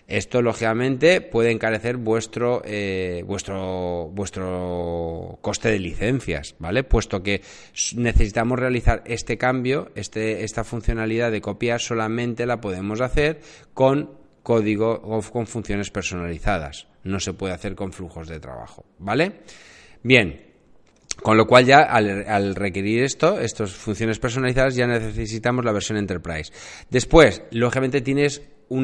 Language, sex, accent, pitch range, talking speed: Spanish, male, Spanish, 100-125 Hz, 130 wpm